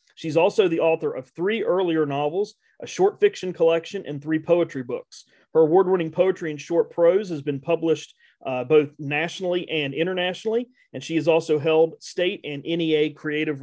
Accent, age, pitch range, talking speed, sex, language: American, 40-59, 145-170 Hz, 170 wpm, male, English